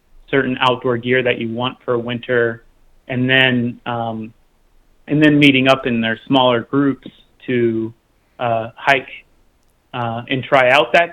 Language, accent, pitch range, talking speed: English, American, 115-135 Hz, 145 wpm